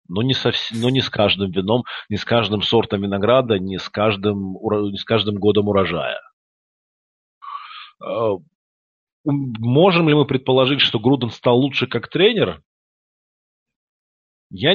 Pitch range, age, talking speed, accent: 105-145 Hz, 40-59, 115 wpm, native